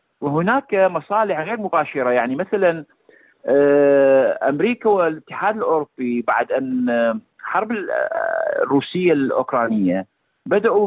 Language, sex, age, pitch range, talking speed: Arabic, male, 50-69, 145-200 Hz, 85 wpm